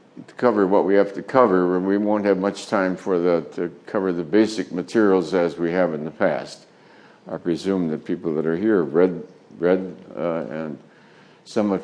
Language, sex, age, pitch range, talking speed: English, male, 60-79, 90-110 Hz, 195 wpm